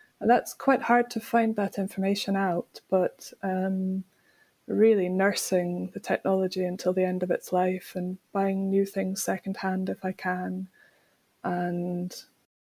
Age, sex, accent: 20-39, female, British